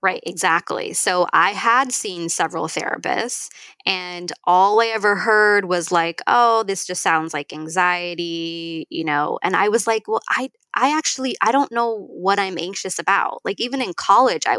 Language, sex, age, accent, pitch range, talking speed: English, female, 20-39, American, 175-220 Hz, 175 wpm